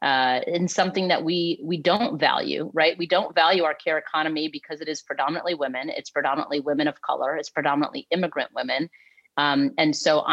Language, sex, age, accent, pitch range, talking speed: English, female, 30-49, American, 145-175 Hz, 185 wpm